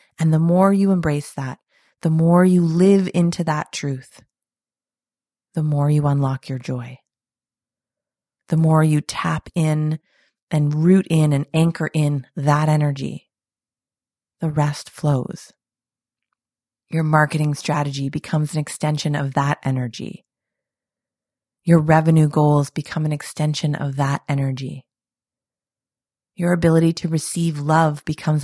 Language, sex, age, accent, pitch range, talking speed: English, female, 30-49, American, 145-170 Hz, 125 wpm